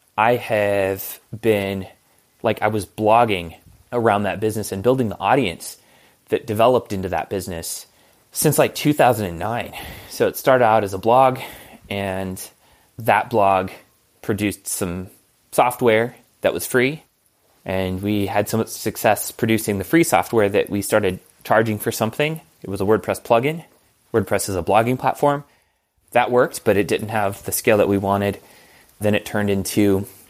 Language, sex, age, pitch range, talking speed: English, male, 20-39, 100-115 Hz, 155 wpm